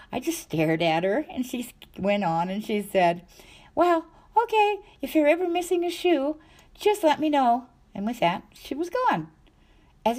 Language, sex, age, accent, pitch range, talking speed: English, female, 50-69, American, 160-255 Hz, 185 wpm